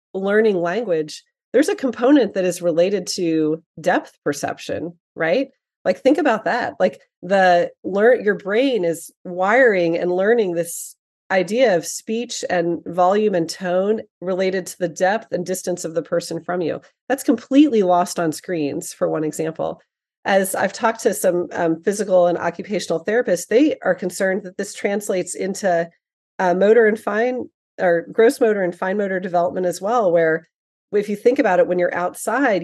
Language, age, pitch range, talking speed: English, 30-49, 175-225 Hz, 165 wpm